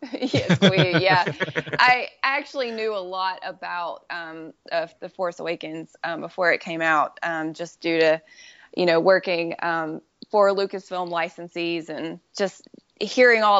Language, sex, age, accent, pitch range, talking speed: English, female, 20-39, American, 165-195 Hz, 150 wpm